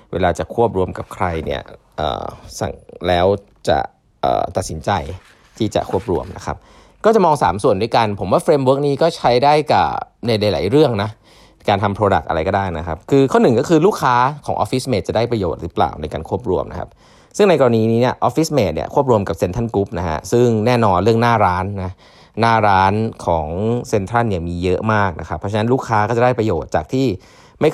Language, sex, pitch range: Thai, male, 95-120 Hz